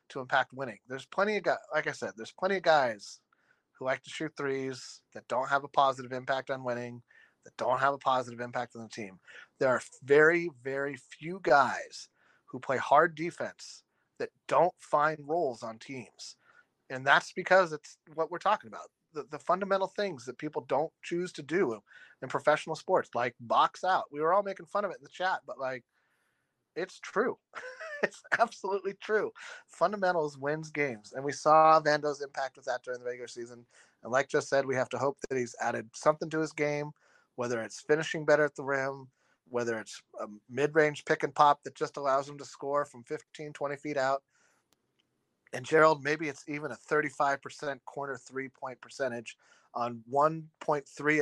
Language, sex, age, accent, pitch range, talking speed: English, male, 30-49, American, 130-160 Hz, 190 wpm